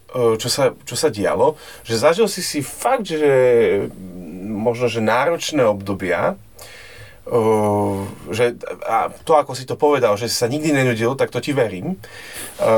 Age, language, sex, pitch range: 30-49, Slovak, male, 110-130 Hz